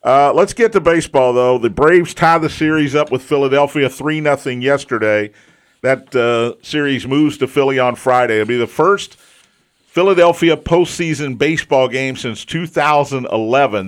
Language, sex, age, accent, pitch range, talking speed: English, male, 50-69, American, 120-150 Hz, 145 wpm